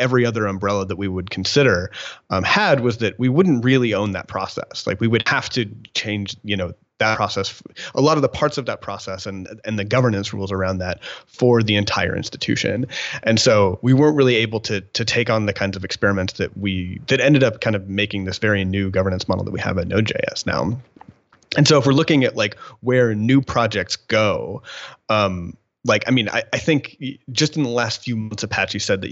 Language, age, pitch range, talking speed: English, 30-49, 100-125 Hz, 220 wpm